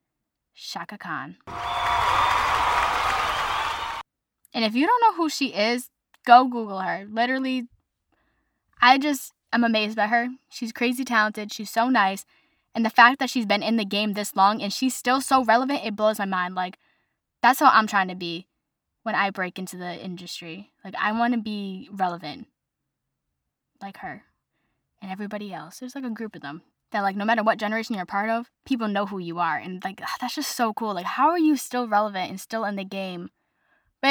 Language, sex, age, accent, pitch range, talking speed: English, female, 10-29, American, 185-235 Hz, 190 wpm